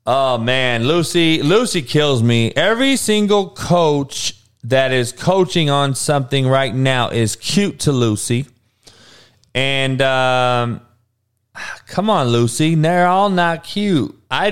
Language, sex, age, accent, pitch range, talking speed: English, male, 30-49, American, 120-190 Hz, 125 wpm